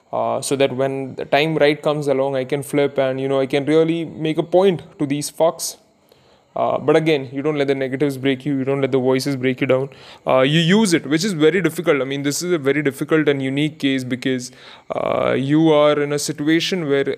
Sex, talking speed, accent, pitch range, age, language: male, 240 wpm, Indian, 135-160 Hz, 20-39, English